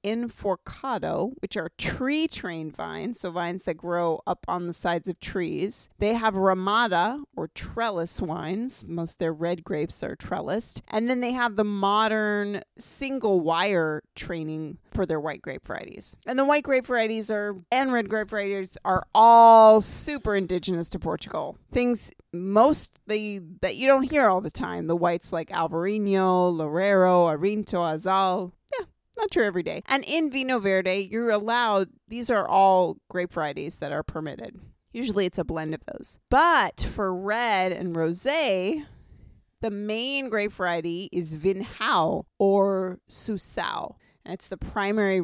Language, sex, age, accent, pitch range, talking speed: English, female, 30-49, American, 175-225 Hz, 150 wpm